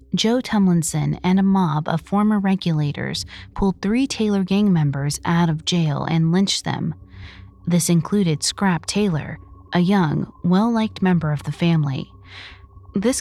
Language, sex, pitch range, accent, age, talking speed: English, female, 145-195 Hz, American, 20-39, 140 wpm